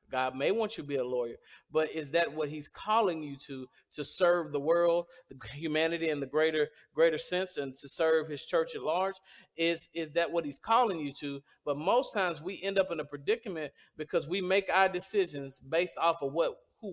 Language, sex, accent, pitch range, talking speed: English, male, American, 145-200 Hz, 215 wpm